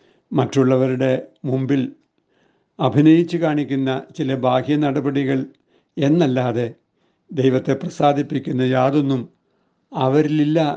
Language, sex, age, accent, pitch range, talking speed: Malayalam, male, 60-79, native, 130-145 Hz, 65 wpm